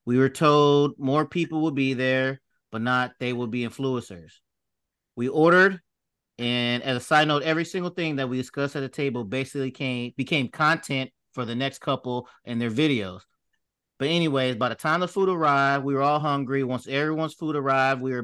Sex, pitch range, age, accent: male, 125-150 Hz, 30-49, American